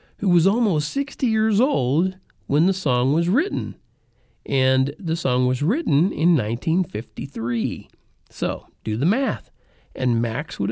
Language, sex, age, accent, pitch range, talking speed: English, male, 50-69, American, 125-170 Hz, 140 wpm